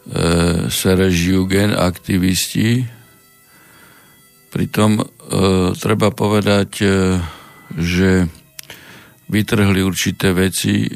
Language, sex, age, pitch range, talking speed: Slovak, male, 50-69, 90-100 Hz, 65 wpm